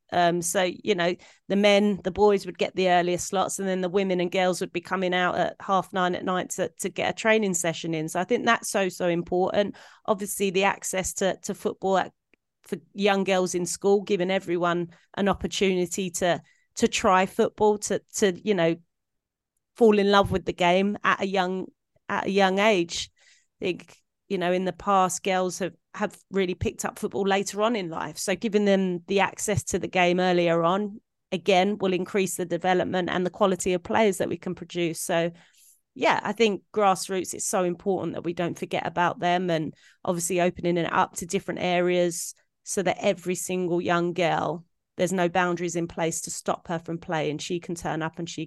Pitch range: 175-195 Hz